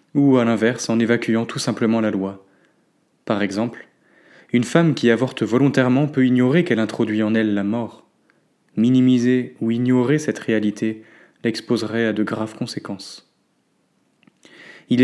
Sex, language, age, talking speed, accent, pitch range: male, French, 20-39, 140 wpm, French, 110-130 Hz